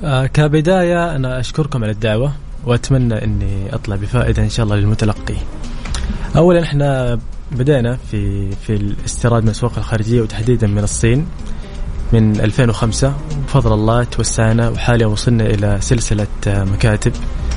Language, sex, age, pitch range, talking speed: Arabic, male, 20-39, 105-125 Hz, 120 wpm